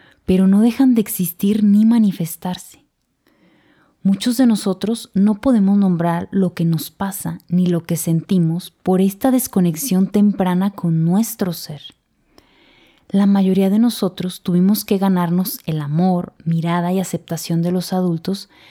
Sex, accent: female, Mexican